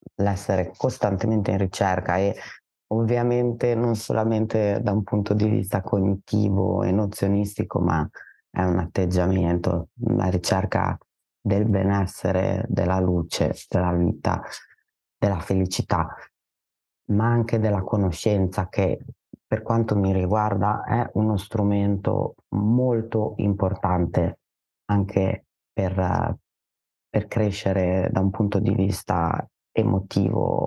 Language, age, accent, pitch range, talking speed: Italian, 30-49, native, 95-110 Hz, 105 wpm